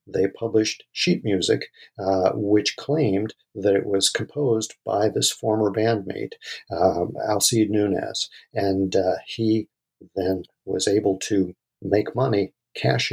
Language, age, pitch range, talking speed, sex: English, 50-69, 95-115 Hz, 130 wpm, male